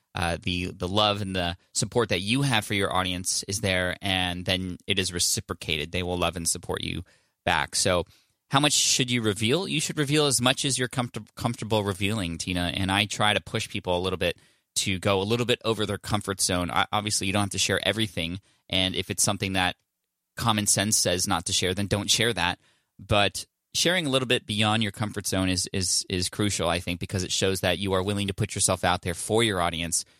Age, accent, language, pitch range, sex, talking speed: 20-39, American, English, 95-115 Hz, male, 225 wpm